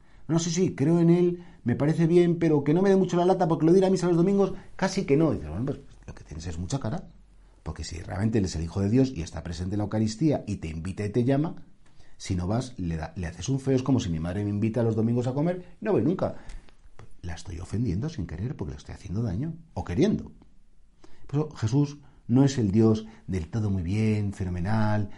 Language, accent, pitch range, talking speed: Spanish, Spanish, 90-130 Hz, 255 wpm